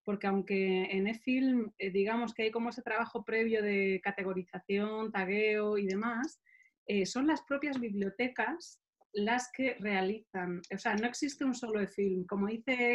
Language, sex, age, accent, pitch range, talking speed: Spanish, female, 30-49, Spanish, 195-235 Hz, 160 wpm